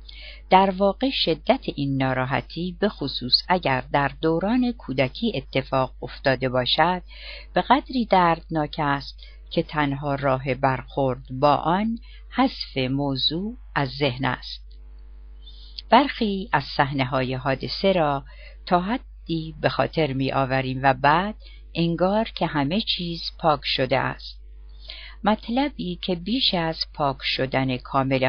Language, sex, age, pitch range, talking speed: Persian, female, 50-69, 130-185 Hz, 115 wpm